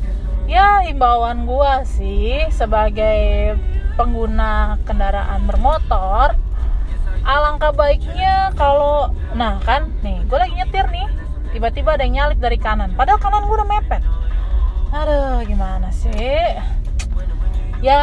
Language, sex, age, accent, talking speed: Indonesian, female, 20-39, native, 110 wpm